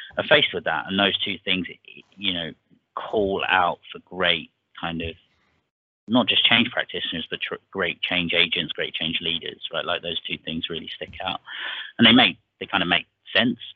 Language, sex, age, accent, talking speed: English, male, 30-49, British, 190 wpm